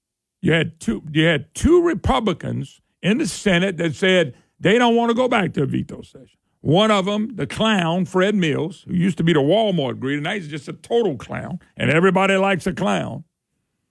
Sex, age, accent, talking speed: male, 50-69, American, 205 wpm